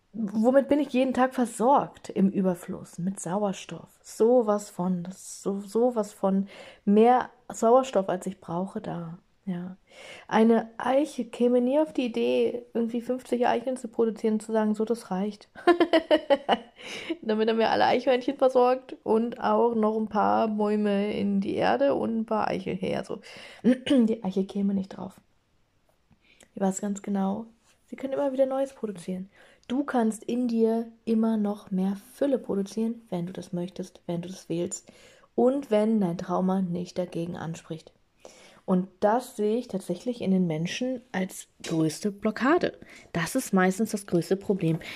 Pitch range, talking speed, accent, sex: 185-245 Hz, 155 wpm, German, female